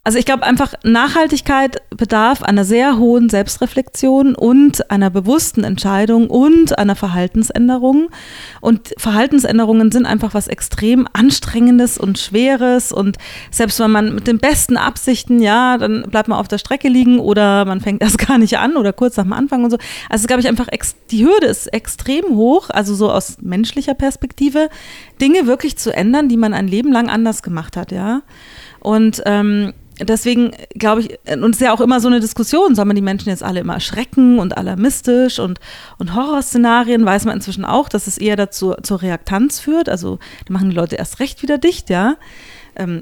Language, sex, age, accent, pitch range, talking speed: German, female, 30-49, German, 200-255 Hz, 185 wpm